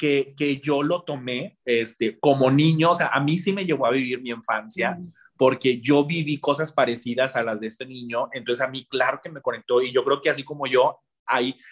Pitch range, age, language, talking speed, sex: 130-155 Hz, 30-49, Spanish, 225 wpm, male